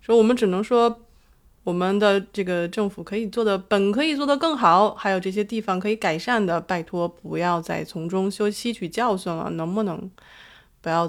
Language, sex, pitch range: Chinese, female, 175-220 Hz